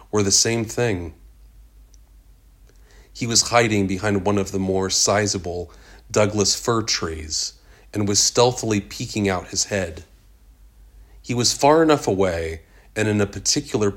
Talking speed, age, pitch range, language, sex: 140 wpm, 30-49, 95-110 Hz, English, male